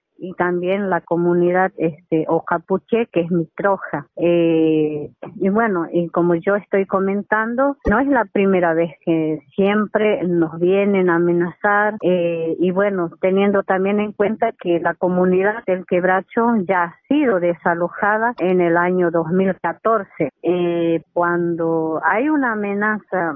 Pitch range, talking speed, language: 170-205 Hz, 140 wpm, Spanish